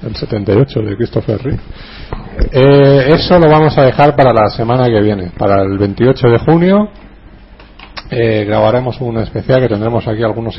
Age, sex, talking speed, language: 40-59, male, 165 wpm, Spanish